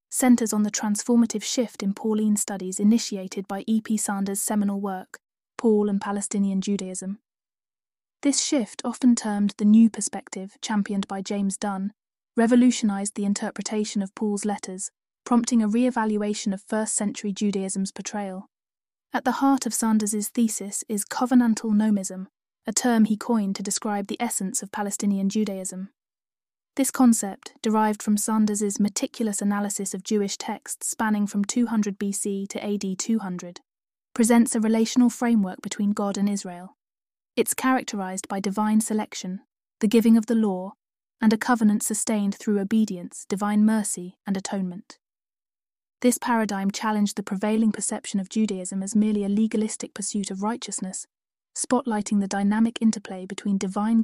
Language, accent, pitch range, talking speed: English, British, 200-225 Hz, 140 wpm